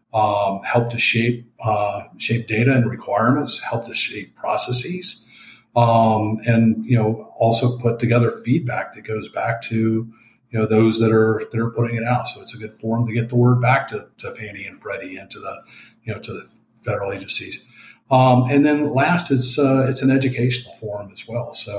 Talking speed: 200 wpm